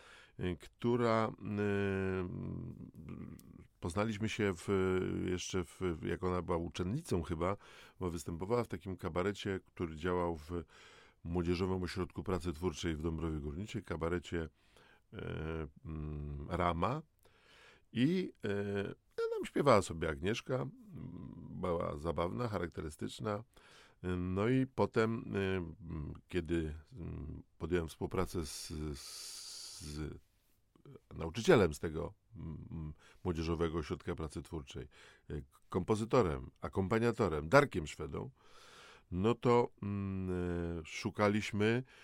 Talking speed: 95 wpm